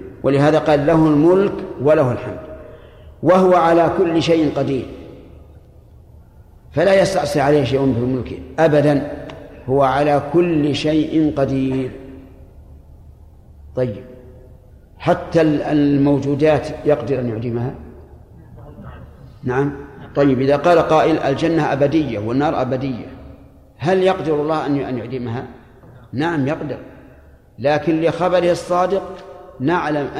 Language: Arabic